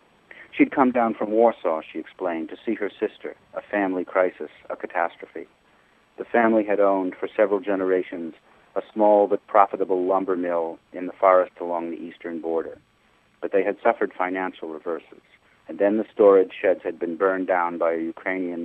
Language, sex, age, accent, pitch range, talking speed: English, male, 50-69, American, 90-110 Hz, 175 wpm